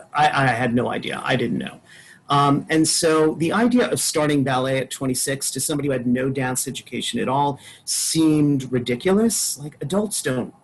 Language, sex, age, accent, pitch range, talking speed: English, male, 40-59, American, 130-165 Hz, 180 wpm